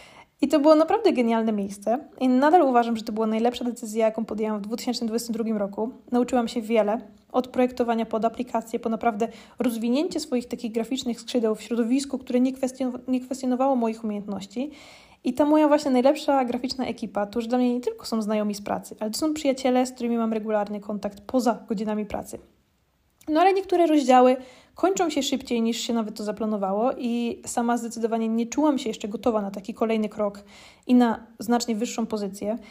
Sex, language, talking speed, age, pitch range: female, Polish, 185 wpm, 20-39, 225-260 Hz